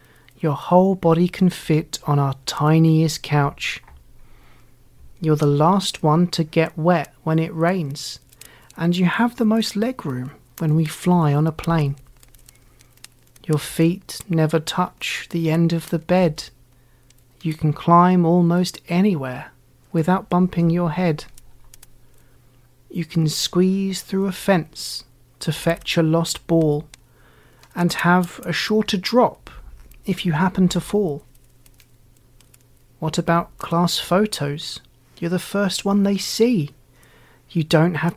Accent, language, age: British, English, 30-49